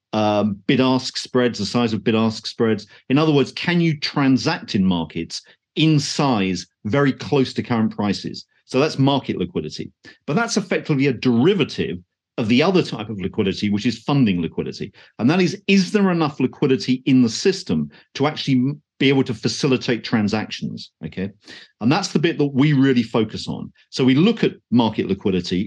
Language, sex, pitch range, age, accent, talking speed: English, male, 110-150 Hz, 40-59, British, 180 wpm